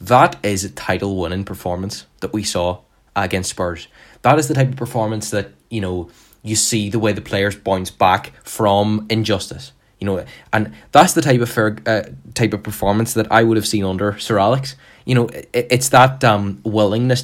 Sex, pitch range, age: male, 105-120 Hz, 10-29